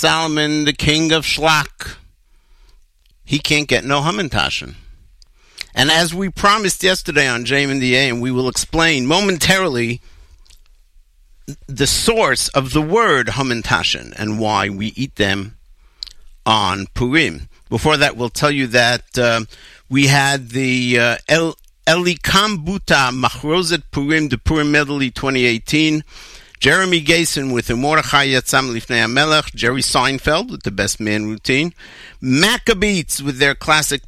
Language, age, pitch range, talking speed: English, 50-69, 115-160 Hz, 125 wpm